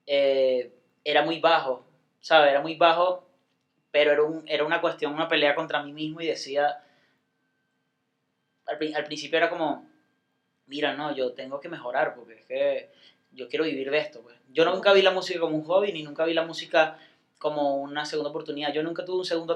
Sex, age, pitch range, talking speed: male, 20-39, 150-200 Hz, 195 wpm